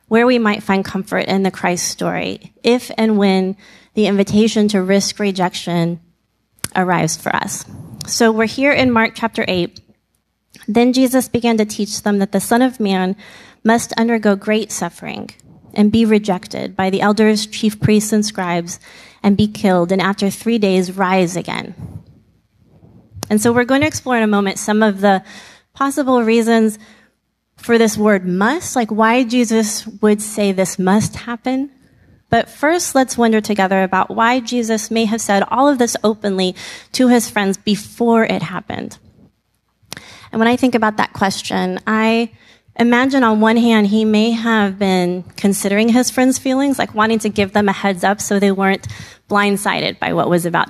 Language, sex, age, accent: English, female, 30-49, American